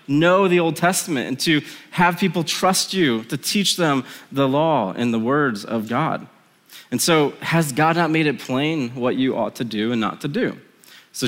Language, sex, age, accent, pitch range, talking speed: English, male, 20-39, American, 120-160 Hz, 200 wpm